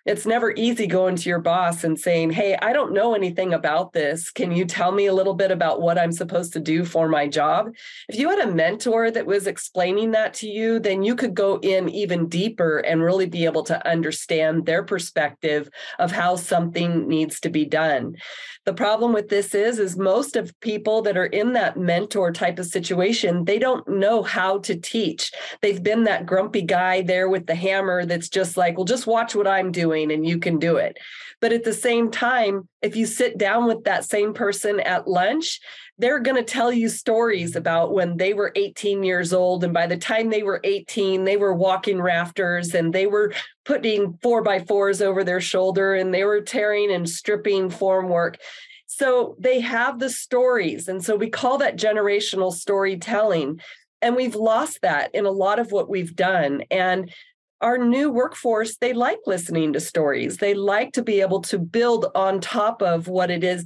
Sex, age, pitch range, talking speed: female, 30-49, 175-220 Hz, 200 wpm